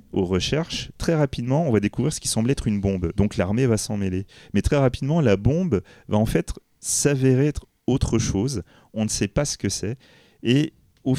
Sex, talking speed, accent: male, 210 wpm, French